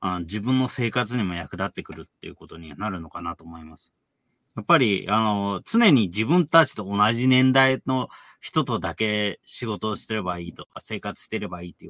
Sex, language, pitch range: male, Japanese, 90-125 Hz